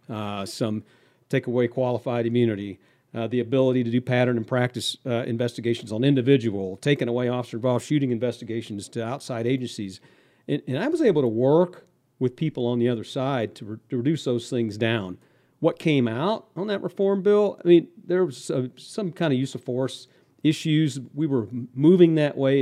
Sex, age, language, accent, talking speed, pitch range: male, 50-69, English, American, 180 wpm, 115-140 Hz